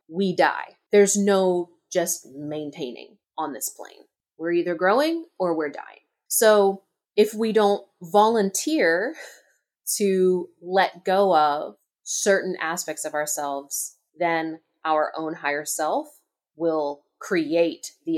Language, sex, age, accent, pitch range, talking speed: English, female, 20-39, American, 155-210 Hz, 120 wpm